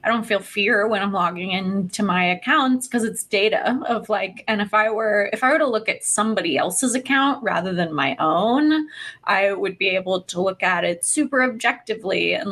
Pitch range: 185-235 Hz